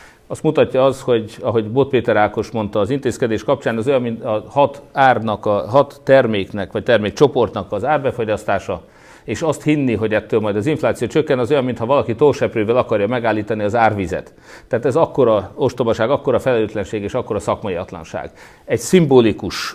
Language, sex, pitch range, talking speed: Hungarian, male, 105-120 Hz, 175 wpm